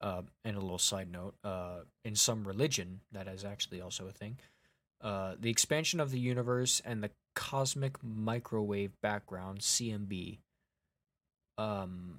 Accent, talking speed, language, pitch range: American, 145 wpm, English, 100-120 Hz